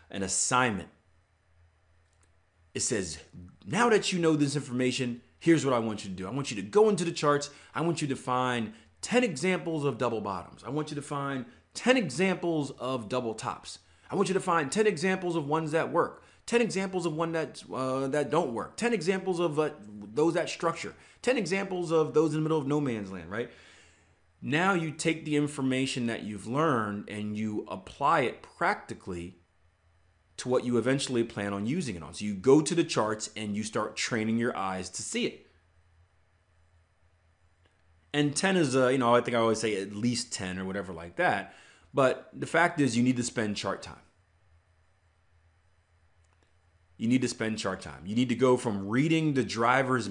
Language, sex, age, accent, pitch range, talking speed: English, male, 30-49, American, 90-145 Hz, 195 wpm